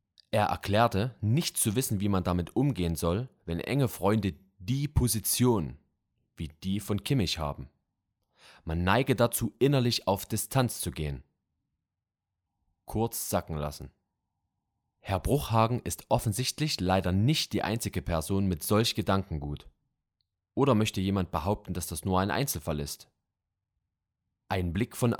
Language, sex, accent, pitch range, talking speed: German, male, German, 90-115 Hz, 135 wpm